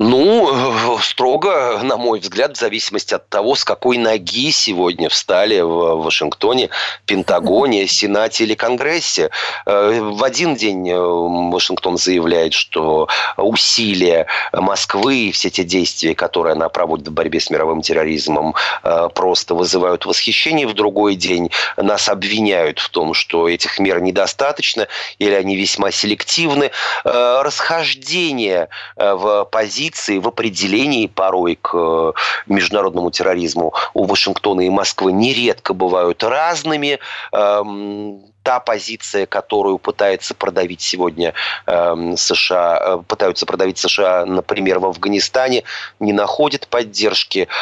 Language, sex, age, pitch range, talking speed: Russian, male, 30-49, 90-115 Hz, 115 wpm